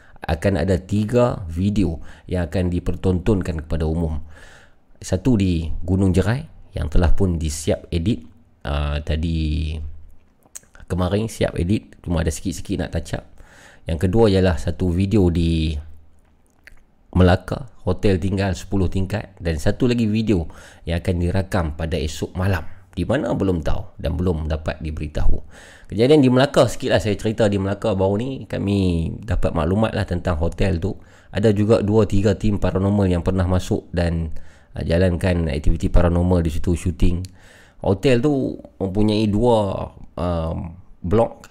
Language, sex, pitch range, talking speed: Malay, male, 85-105 Hz, 140 wpm